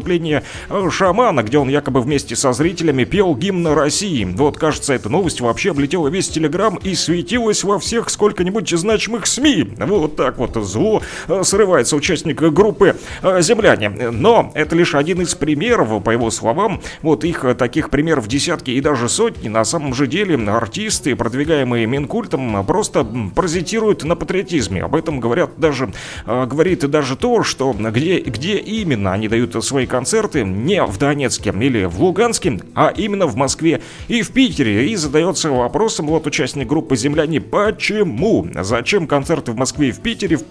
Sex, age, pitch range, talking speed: male, 30-49, 130-185 Hz, 155 wpm